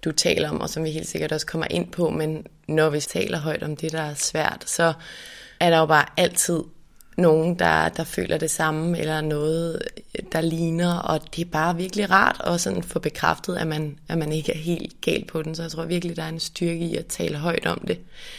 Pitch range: 150-165 Hz